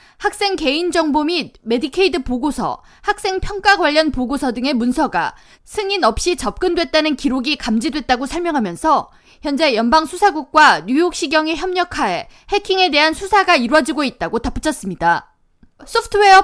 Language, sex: Korean, female